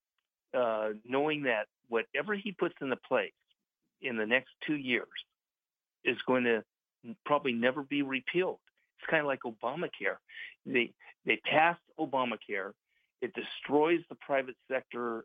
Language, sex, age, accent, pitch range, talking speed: English, male, 50-69, American, 120-150 Hz, 135 wpm